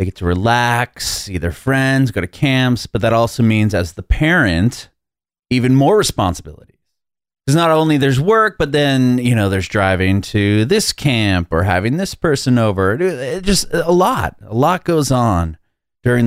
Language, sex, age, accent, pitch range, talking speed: English, male, 30-49, American, 95-135 Hz, 185 wpm